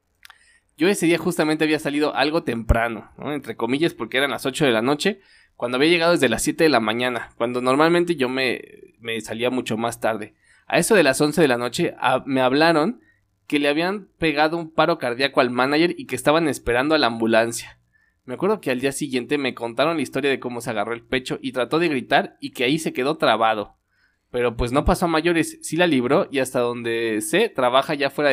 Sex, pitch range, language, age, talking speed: male, 125-170 Hz, Spanish, 20-39, 220 wpm